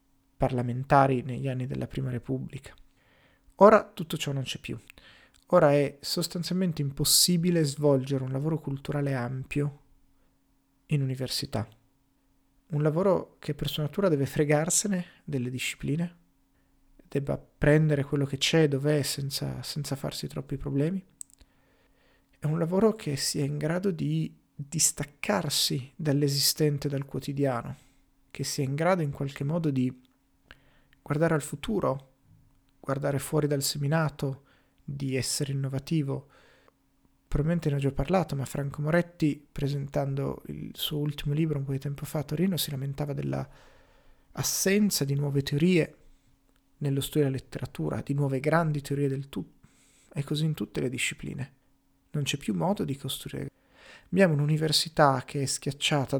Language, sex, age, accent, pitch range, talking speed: Italian, male, 30-49, native, 135-150 Hz, 135 wpm